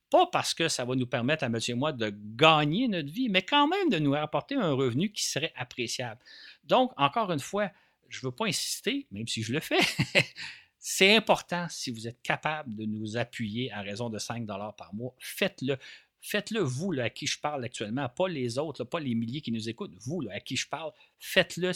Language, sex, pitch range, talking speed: French, male, 115-155 Hz, 220 wpm